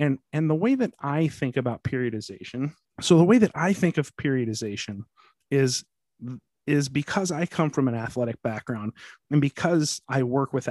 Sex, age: male, 30-49